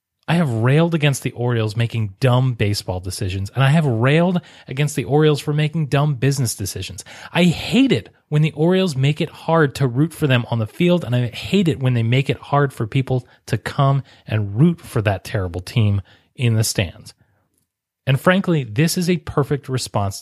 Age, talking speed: 30-49, 200 wpm